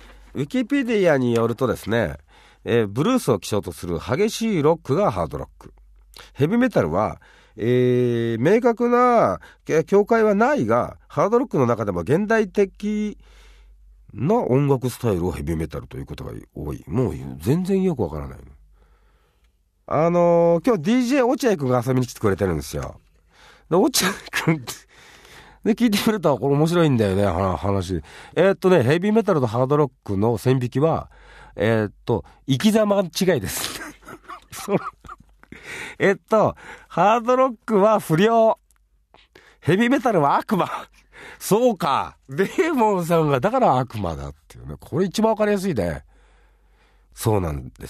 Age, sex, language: 40-59, male, Japanese